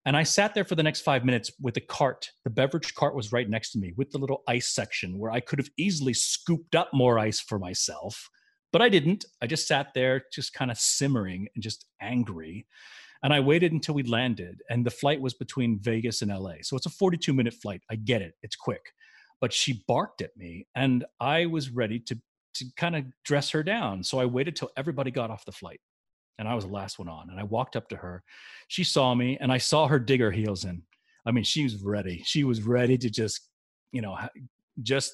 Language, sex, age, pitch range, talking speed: English, male, 40-59, 115-140 Hz, 235 wpm